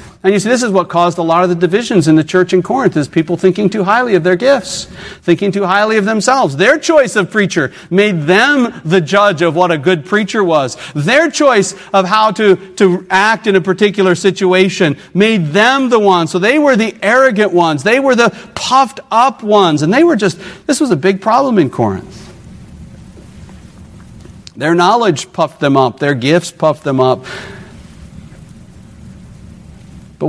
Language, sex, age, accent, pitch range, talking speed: English, male, 50-69, American, 145-200 Hz, 185 wpm